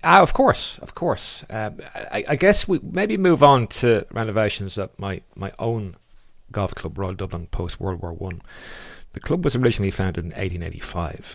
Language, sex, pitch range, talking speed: English, male, 90-110 Hz, 180 wpm